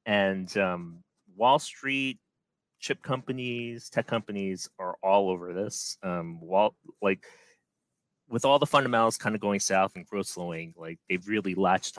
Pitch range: 90-120 Hz